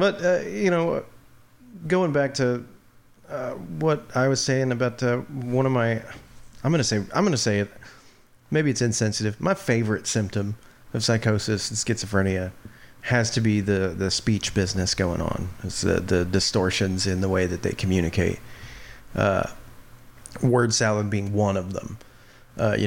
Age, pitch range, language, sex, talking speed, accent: 30-49, 100-120 Hz, English, male, 165 wpm, American